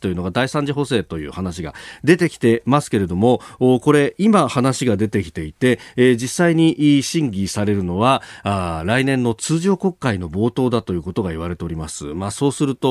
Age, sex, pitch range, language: 40-59, male, 100-145 Hz, Japanese